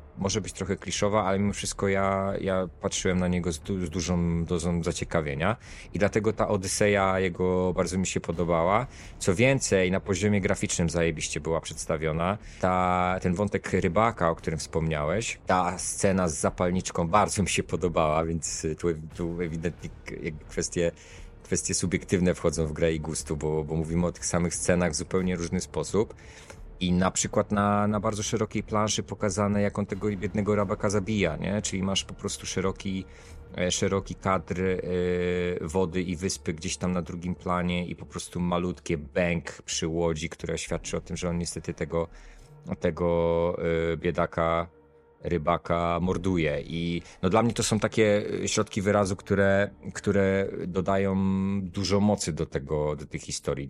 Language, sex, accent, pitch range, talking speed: Polish, male, native, 85-100 Hz, 160 wpm